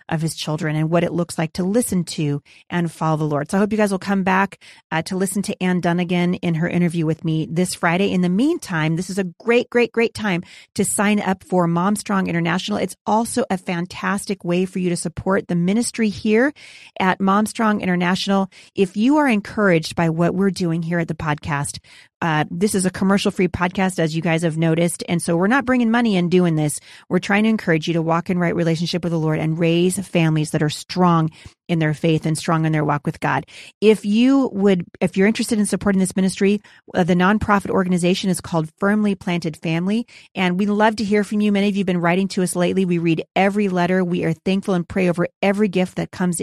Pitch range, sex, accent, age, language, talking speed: 170-205 Hz, female, American, 30-49, English, 230 wpm